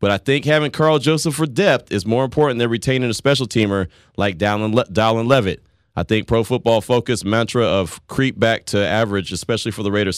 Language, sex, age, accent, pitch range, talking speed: English, male, 30-49, American, 100-130 Hz, 200 wpm